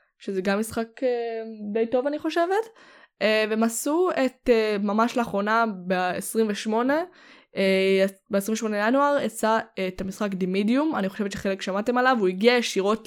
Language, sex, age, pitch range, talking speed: Hebrew, female, 10-29, 190-230 Hz, 135 wpm